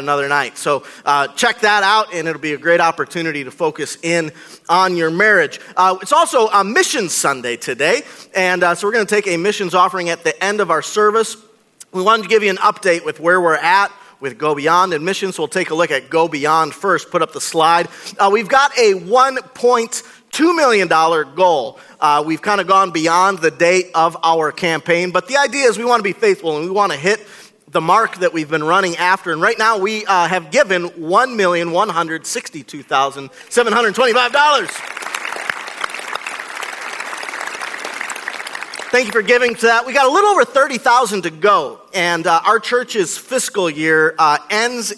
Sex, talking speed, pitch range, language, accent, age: male, 185 wpm, 165-225 Hz, English, American, 40-59